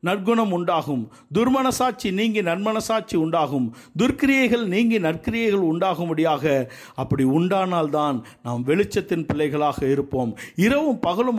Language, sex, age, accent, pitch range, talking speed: Tamil, male, 50-69, native, 150-215 Hz, 105 wpm